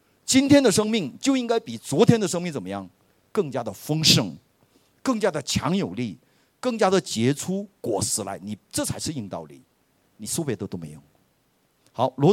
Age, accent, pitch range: 50-69, native, 120-205 Hz